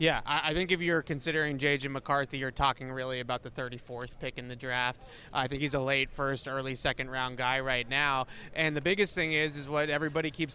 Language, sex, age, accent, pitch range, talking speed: English, male, 20-39, American, 135-155 Hz, 220 wpm